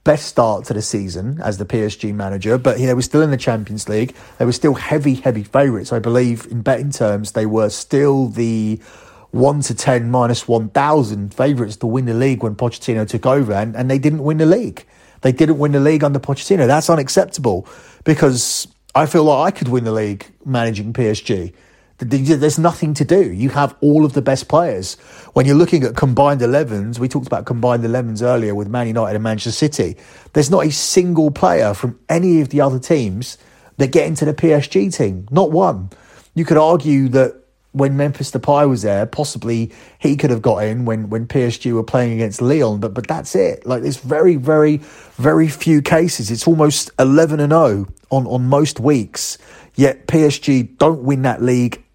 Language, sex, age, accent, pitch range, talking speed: English, male, 30-49, British, 115-150 Hz, 195 wpm